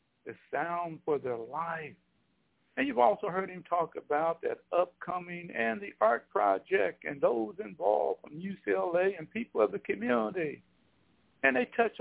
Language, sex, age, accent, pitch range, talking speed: English, male, 60-79, American, 155-195 Hz, 155 wpm